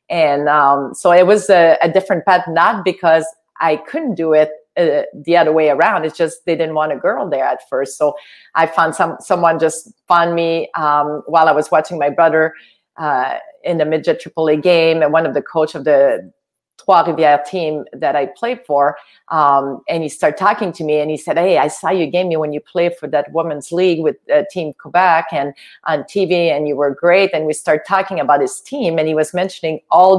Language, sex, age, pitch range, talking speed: English, female, 40-59, 155-200 Hz, 220 wpm